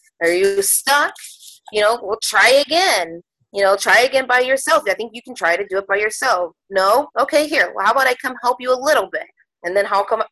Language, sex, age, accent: English, female, 20-39, American